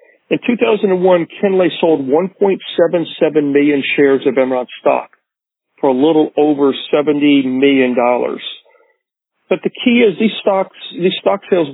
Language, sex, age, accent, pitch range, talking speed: English, male, 50-69, American, 140-185 Hz, 125 wpm